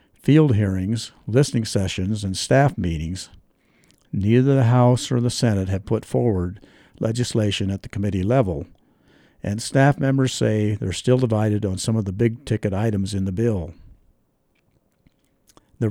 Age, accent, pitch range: 60-79, American, 100-125 Hz